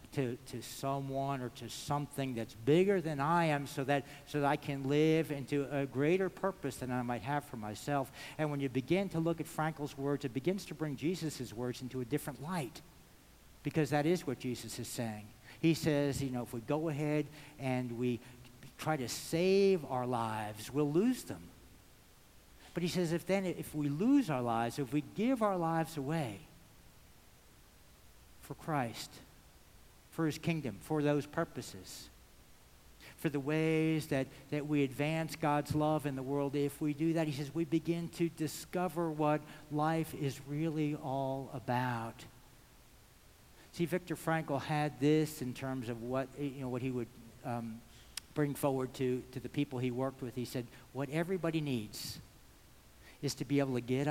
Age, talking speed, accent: 60-79, 175 wpm, American